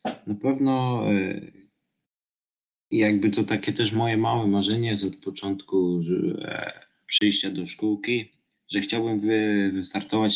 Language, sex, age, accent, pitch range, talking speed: Polish, male, 20-39, native, 95-115 Hz, 105 wpm